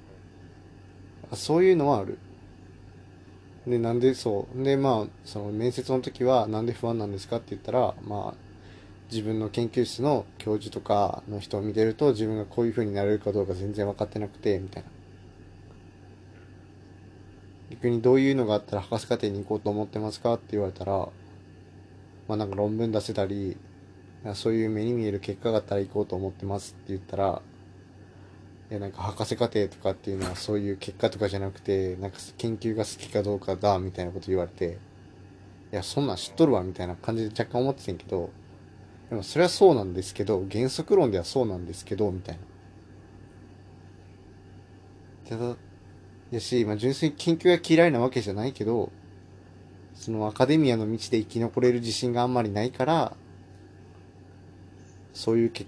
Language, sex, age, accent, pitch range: Japanese, male, 20-39, native, 95-115 Hz